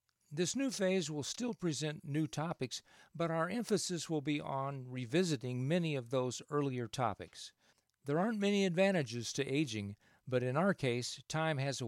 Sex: male